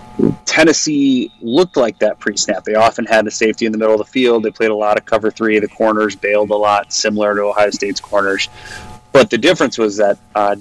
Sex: male